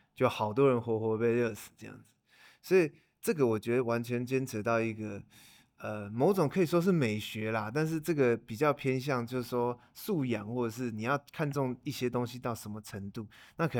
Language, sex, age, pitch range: Chinese, male, 20-39, 105-125 Hz